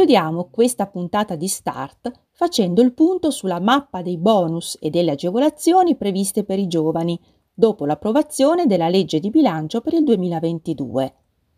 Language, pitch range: Italian, 165-255 Hz